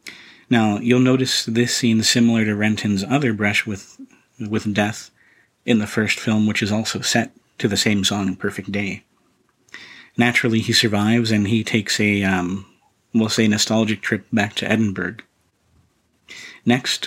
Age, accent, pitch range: 40-59, American, 105-115 Hz